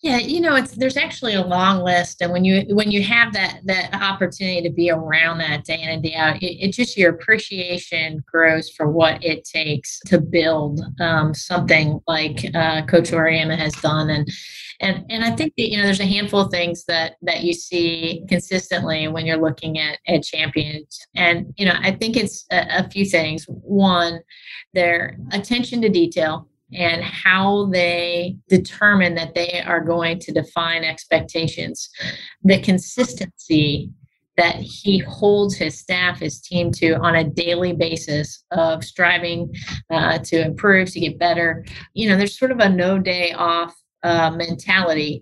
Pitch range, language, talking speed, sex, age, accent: 160-190 Hz, English, 175 wpm, female, 30-49, American